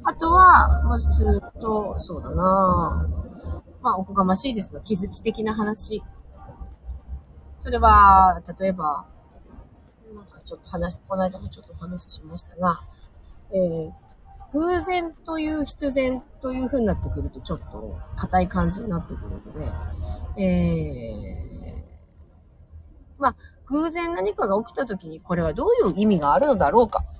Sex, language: female, Japanese